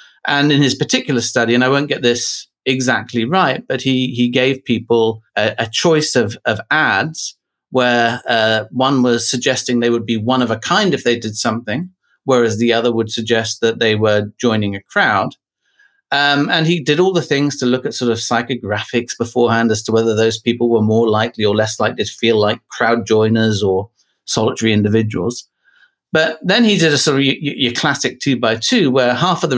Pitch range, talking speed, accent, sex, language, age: 115-140 Hz, 195 wpm, British, male, English, 40-59